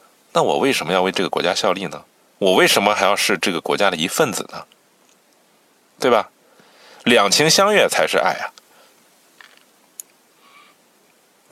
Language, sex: Chinese, male